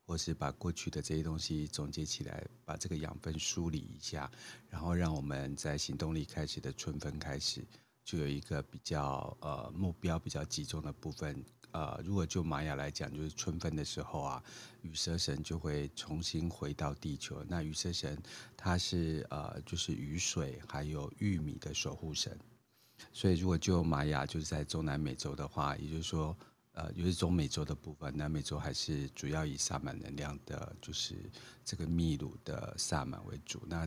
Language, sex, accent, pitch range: Chinese, male, native, 75-85 Hz